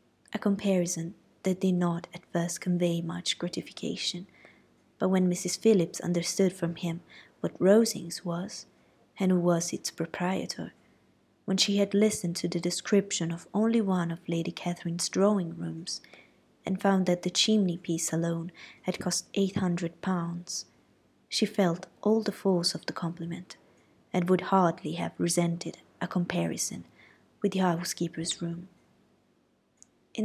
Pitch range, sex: 170-195 Hz, female